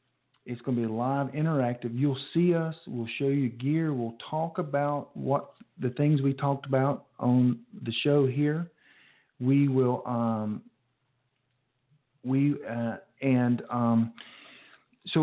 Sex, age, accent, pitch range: male, 50-69, American, 120-140 Hz